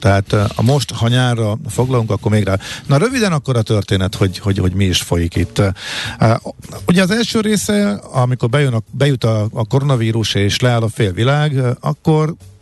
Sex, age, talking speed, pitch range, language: male, 50-69, 170 wpm, 100-130 Hz, Hungarian